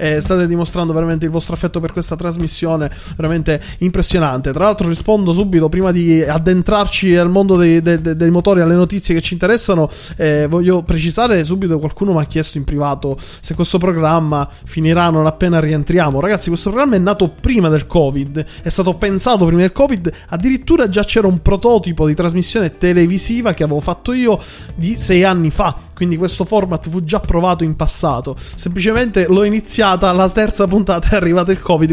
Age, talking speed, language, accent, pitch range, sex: 20-39, 180 wpm, Italian, native, 160-205 Hz, male